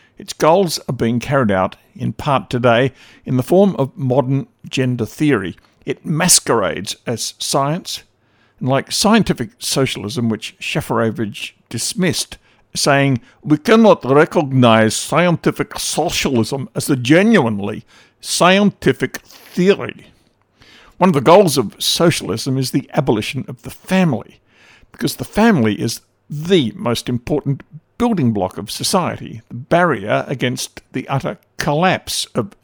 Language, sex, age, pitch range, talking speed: English, male, 60-79, 115-155 Hz, 125 wpm